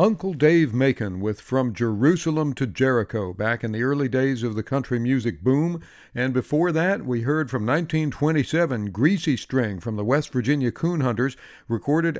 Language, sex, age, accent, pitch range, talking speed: English, male, 60-79, American, 115-145 Hz, 165 wpm